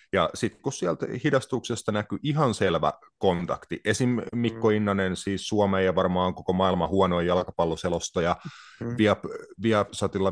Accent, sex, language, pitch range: native, male, Finnish, 90-115 Hz